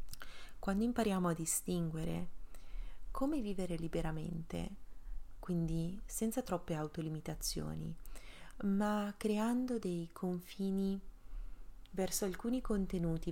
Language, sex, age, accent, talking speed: Italian, female, 30-49, native, 80 wpm